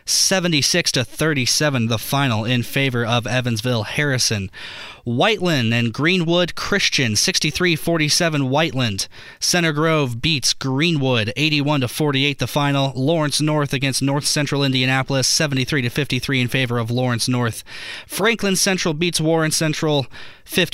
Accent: American